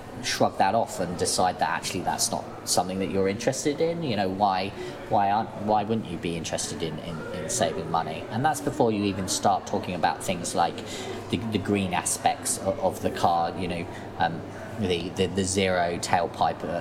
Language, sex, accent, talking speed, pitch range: English, male, British, 195 wpm, 90-110 Hz